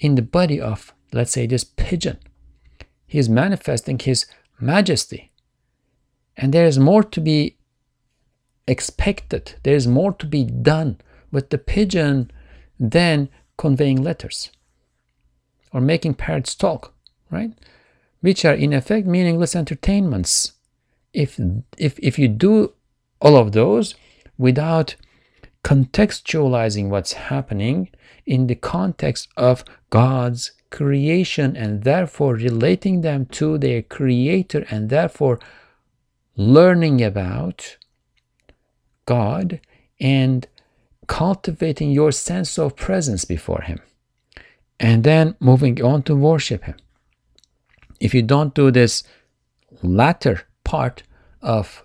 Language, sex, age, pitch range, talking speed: English, male, 50-69, 115-155 Hz, 110 wpm